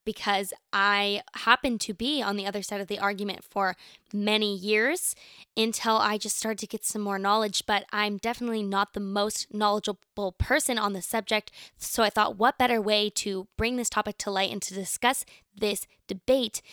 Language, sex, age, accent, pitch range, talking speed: English, female, 10-29, American, 200-235 Hz, 185 wpm